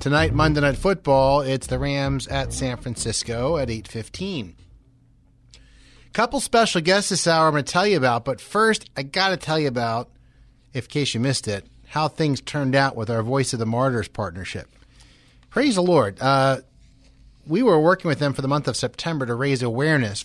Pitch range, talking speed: 120-150 Hz, 185 wpm